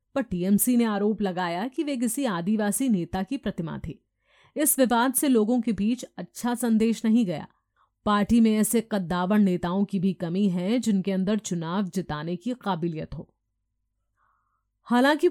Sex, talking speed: female, 155 wpm